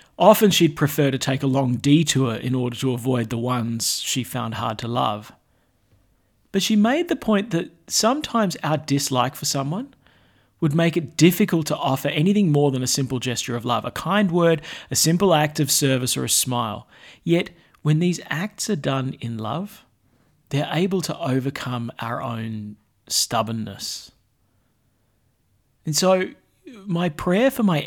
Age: 40-59